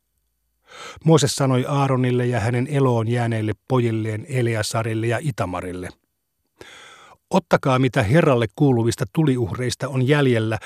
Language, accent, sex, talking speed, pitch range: Finnish, native, male, 100 wpm, 115-140 Hz